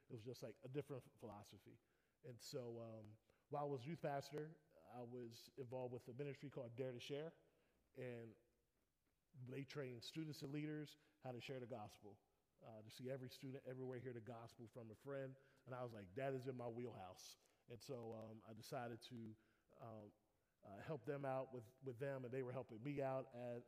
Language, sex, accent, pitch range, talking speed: English, male, American, 115-135 Hz, 200 wpm